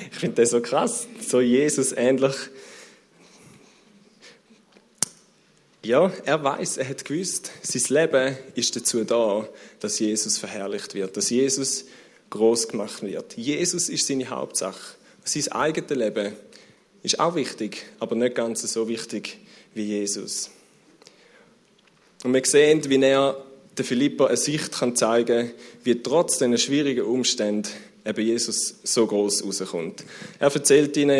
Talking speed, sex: 135 wpm, male